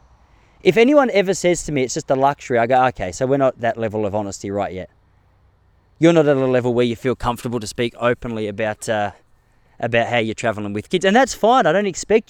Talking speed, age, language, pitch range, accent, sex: 235 wpm, 20-39, English, 110-160 Hz, Australian, male